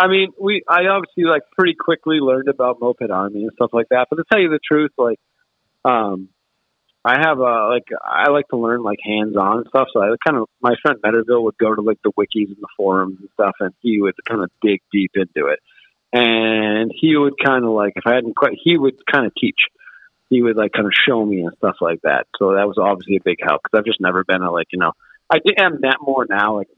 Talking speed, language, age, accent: 250 wpm, English, 40-59, American